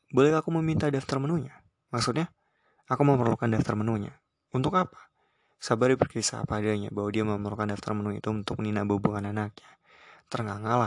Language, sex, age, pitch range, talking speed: Indonesian, male, 20-39, 105-125 Hz, 140 wpm